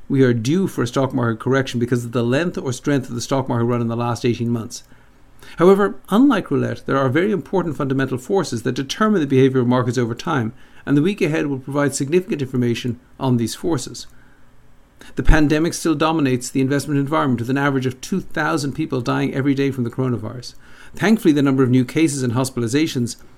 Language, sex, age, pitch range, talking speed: English, male, 60-79, 125-150 Hz, 205 wpm